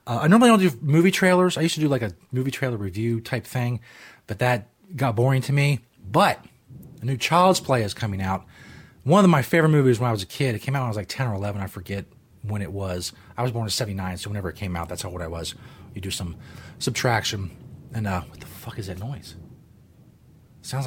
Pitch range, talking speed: 105-155 Hz, 245 wpm